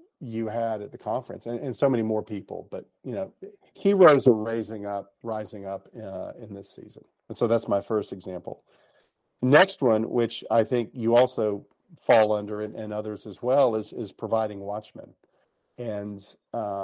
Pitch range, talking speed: 105-130 Hz, 175 wpm